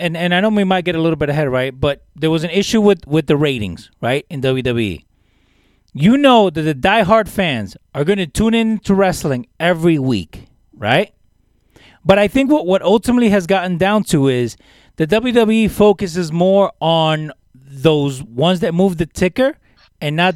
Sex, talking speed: male, 190 wpm